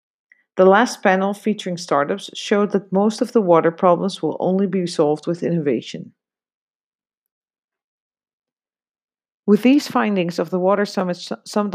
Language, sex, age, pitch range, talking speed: English, female, 40-59, 170-210 Hz, 135 wpm